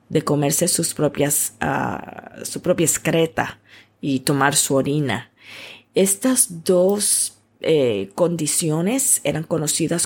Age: 30-49